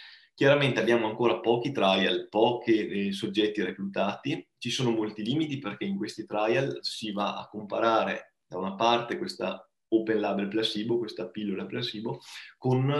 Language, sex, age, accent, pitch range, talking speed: Italian, male, 20-39, native, 105-135 Hz, 145 wpm